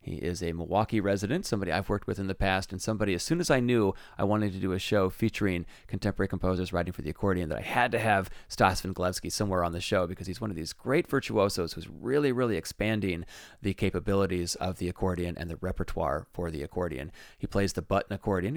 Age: 30-49